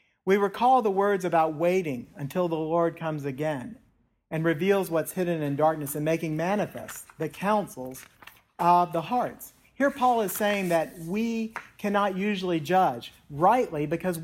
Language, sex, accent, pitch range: English, male, American, 155-205 Hz